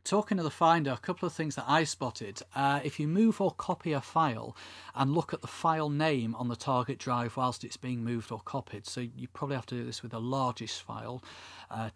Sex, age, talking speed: male, 40-59, 235 wpm